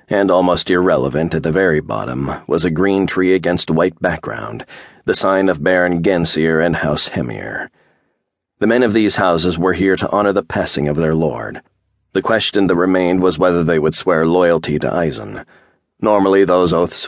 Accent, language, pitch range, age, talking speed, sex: American, English, 80-95 Hz, 40-59, 185 wpm, male